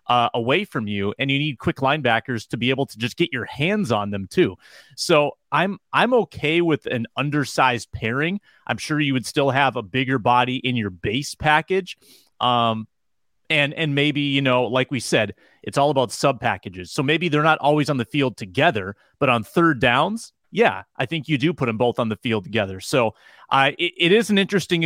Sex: male